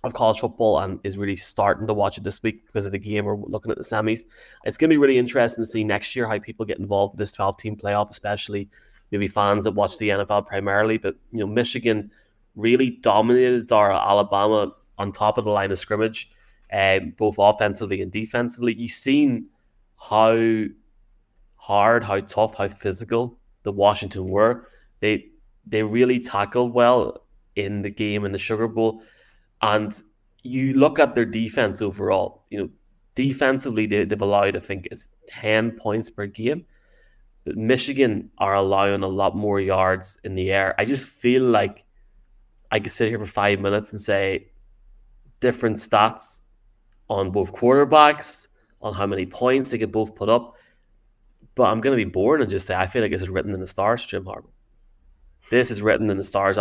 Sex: male